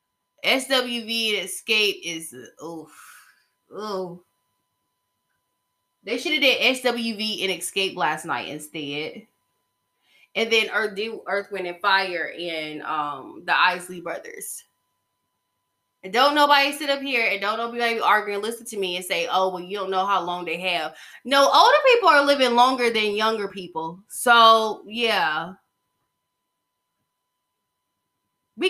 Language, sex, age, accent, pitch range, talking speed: English, female, 20-39, American, 185-245 Hz, 140 wpm